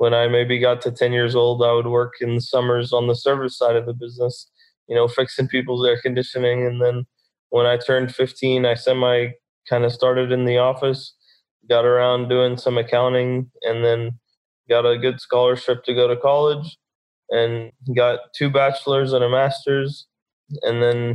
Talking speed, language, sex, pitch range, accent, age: 185 wpm, English, male, 120-130 Hz, American, 20-39